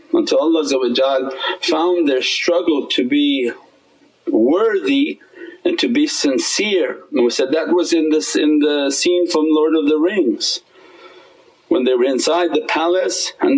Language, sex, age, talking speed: English, male, 50-69, 145 wpm